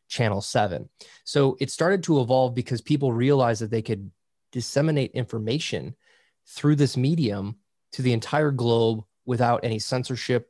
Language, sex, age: English, male, 20-39